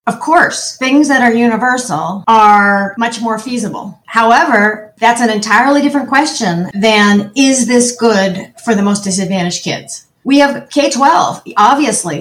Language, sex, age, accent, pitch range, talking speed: English, female, 40-59, American, 200-250 Hz, 145 wpm